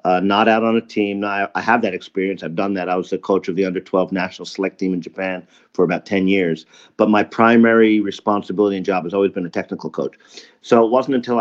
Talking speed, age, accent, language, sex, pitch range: 245 wpm, 40-59, American, English, male, 95-110 Hz